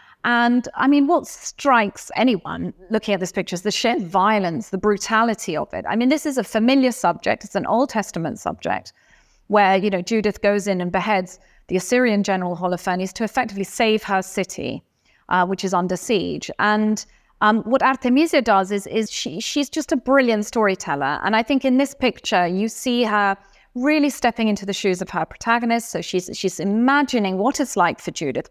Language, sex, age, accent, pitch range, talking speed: English, female, 30-49, British, 190-250 Hz, 190 wpm